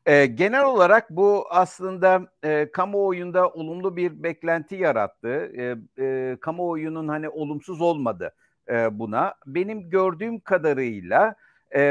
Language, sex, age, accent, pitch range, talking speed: Turkish, male, 60-79, native, 140-170 Hz, 115 wpm